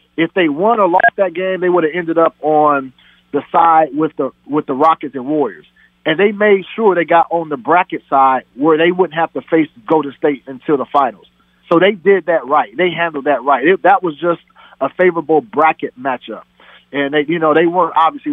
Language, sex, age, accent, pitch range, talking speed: English, male, 40-59, American, 145-190 Hz, 220 wpm